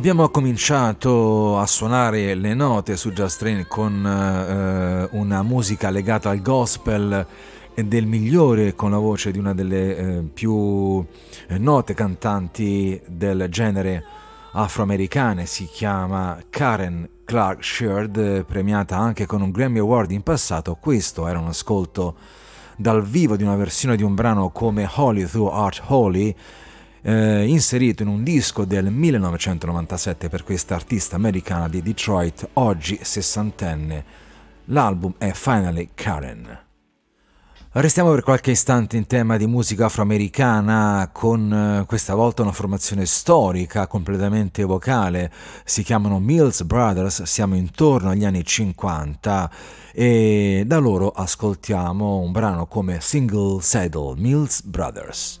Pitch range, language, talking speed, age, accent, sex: 95-115 Hz, Italian, 130 wpm, 30-49, native, male